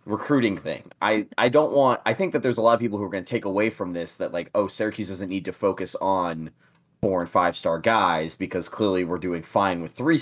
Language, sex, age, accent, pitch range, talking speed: English, male, 20-39, American, 90-115 Hz, 250 wpm